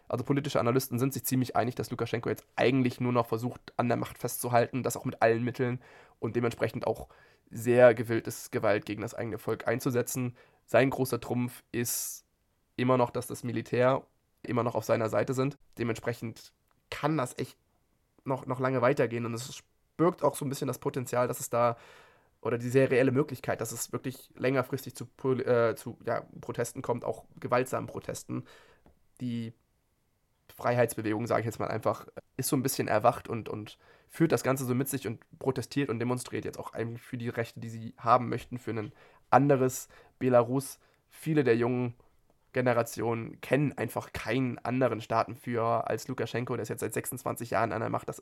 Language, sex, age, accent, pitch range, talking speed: German, male, 20-39, German, 115-130 Hz, 180 wpm